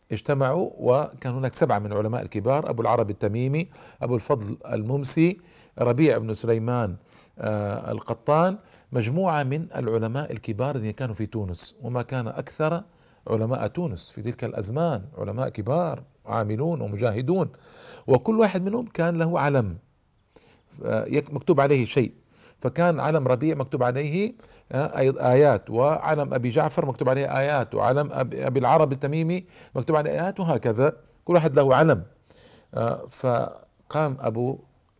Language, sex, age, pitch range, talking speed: Arabic, male, 50-69, 115-155 Hz, 125 wpm